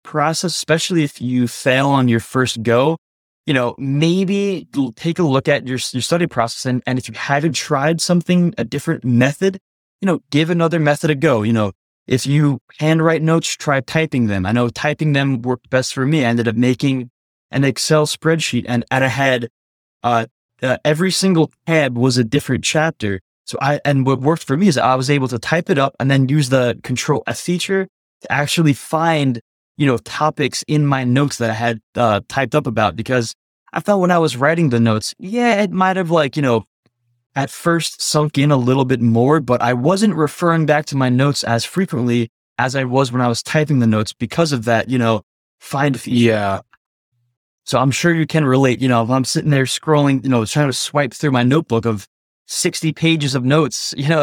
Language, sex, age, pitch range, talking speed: English, male, 20-39, 120-155 Hz, 210 wpm